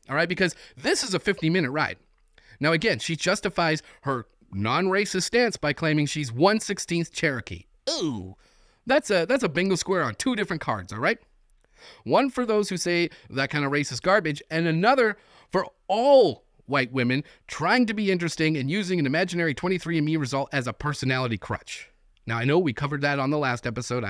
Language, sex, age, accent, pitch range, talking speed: English, male, 30-49, American, 125-185 Hz, 185 wpm